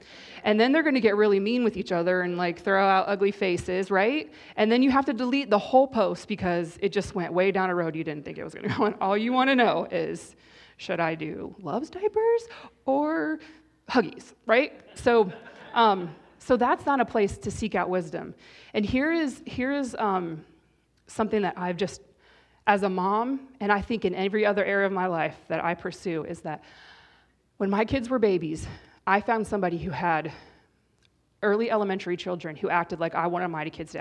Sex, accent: female, American